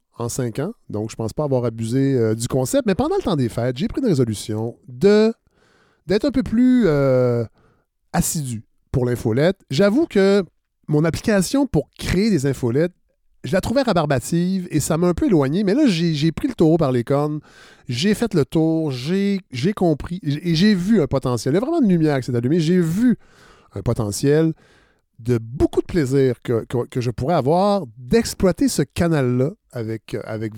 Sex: male